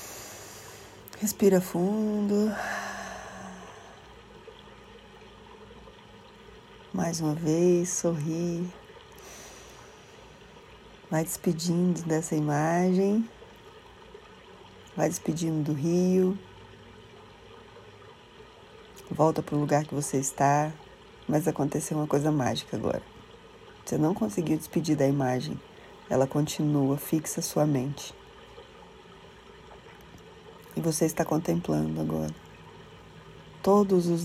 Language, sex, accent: Portuguese, female, Brazilian